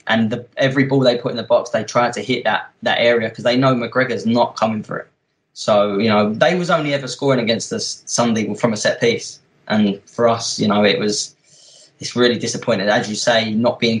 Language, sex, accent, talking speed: English, male, British, 230 wpm